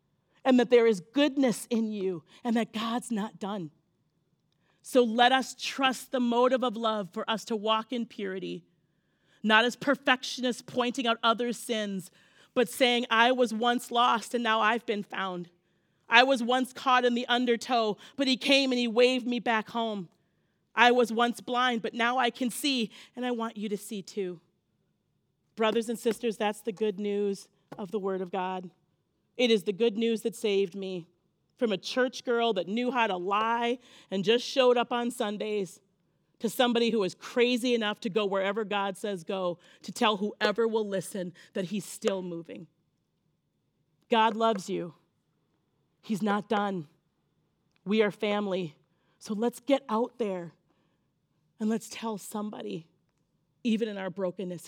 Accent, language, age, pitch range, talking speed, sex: American, English, 40-59, 185-240 Hz, 170 wpm, female